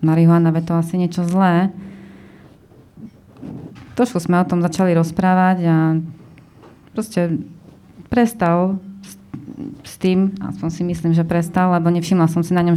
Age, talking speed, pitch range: 20-39, 125 wpm, 170-190 Hz